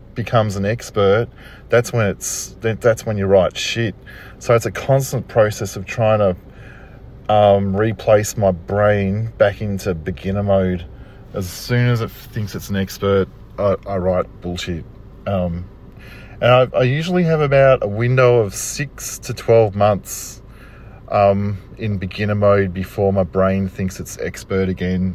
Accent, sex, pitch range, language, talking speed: Australian, male, 95-120 Hz, English, 155 wpm